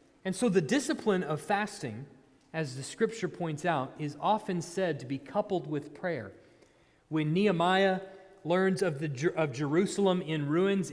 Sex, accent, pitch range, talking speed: male, American, 175-230 Hz, 155 wpm